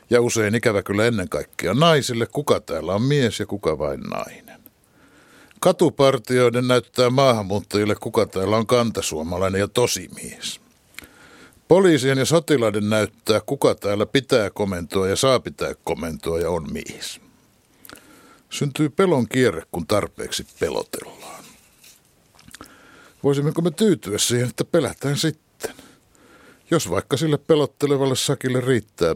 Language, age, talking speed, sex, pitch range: Finnish, 60-79, 120 wpm, male, 105-145 Hz